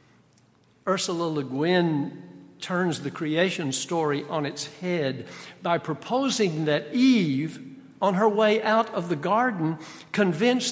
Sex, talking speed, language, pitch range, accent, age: male, 125 wpm, English, 150-210 Hz, American, 60-79